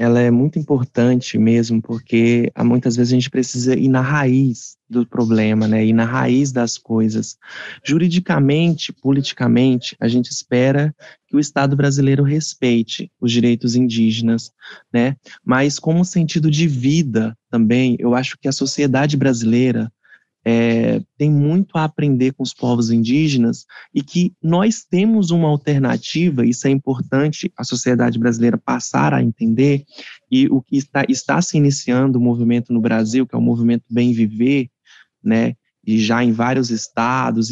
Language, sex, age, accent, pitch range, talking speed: Portuguese, male, 20-39, Brazilian, 120-150 Hz, 150 wpm